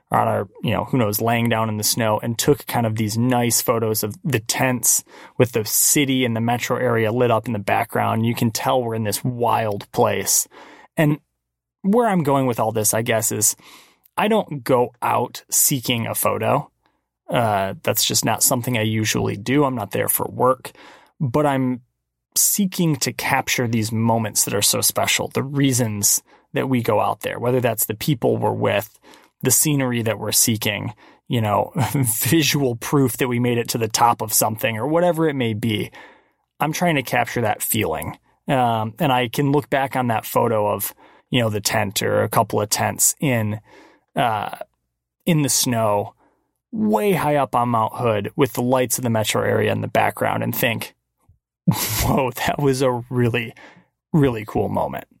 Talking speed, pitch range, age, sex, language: 190 wpm, 110-135 Hz, 20-39, male, English